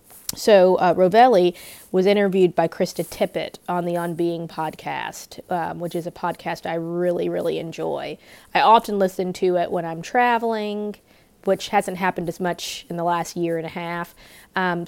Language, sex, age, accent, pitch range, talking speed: English, female, 20-39, American, 170-195 Hz, 175 wpm